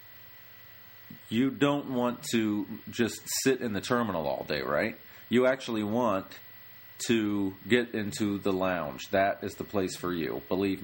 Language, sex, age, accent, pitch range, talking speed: English, male, 40-59, American, 100-115 Hz, 150 wpm